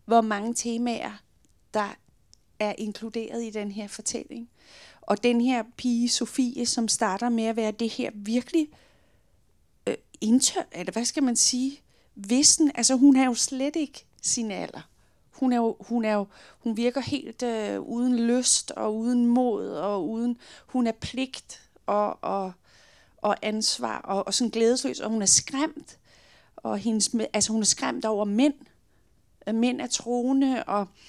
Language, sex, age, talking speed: Danish, female, 30-49, 160 wpm